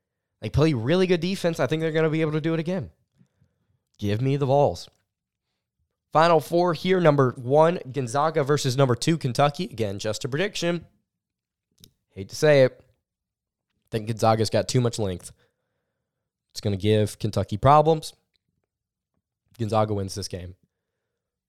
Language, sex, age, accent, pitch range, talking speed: English, male, 20-39, American, 105-140 Hz, 155 wpm